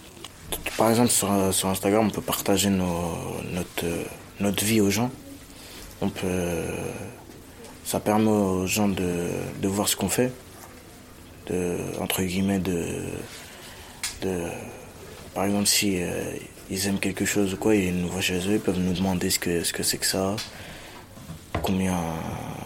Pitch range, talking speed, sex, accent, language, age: 85-105 Hz, 155 wpm, male, French, French, 20-39